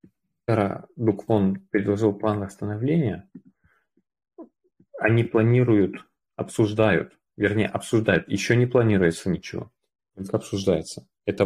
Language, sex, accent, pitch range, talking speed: Russian, male, native, 100-120 Hz, 80 wpm